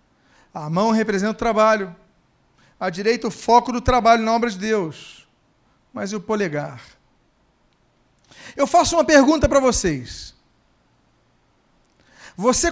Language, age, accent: Portuguese, 40-59, Brazilian